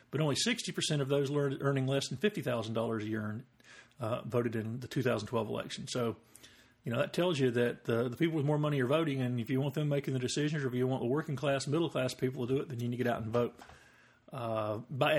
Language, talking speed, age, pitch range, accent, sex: English, 250 wpm, 50-69, 125-150 Hz, American, male